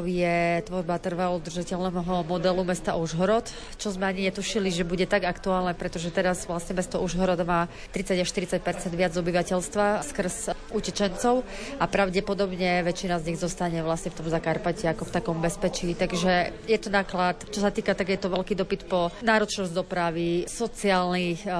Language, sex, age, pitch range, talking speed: Slovak, female, 30-49, 175-200 Hz, 160 wpm